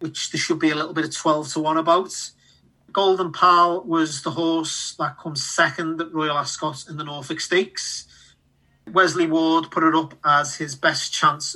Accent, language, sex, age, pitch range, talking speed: British, English, male, 30-49, 145-160 Hz, 185 wpm